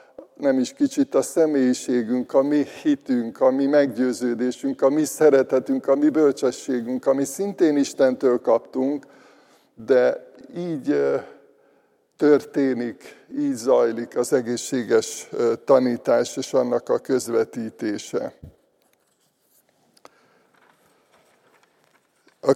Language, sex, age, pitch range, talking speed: Hungarian, male, 60-79, 125-160 Hz, 95 wpm